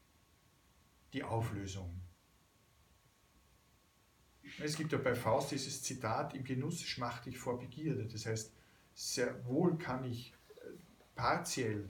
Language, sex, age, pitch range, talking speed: German, male, 50-69, 105-135 Hz, 110 wpm